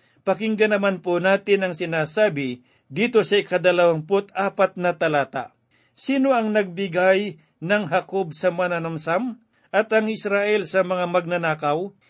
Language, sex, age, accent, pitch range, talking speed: Filipino, male, 50-69, native, 170-205 Hz, 120 wpm